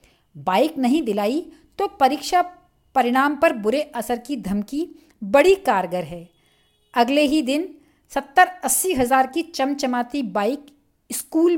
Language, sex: Hindi, female